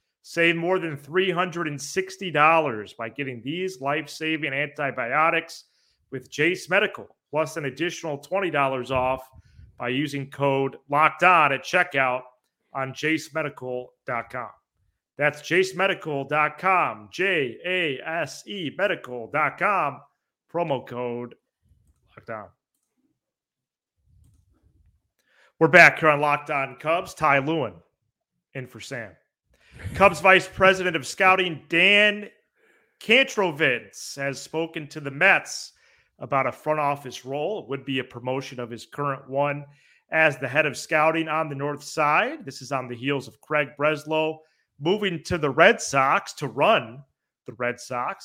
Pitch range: 135-170 Hz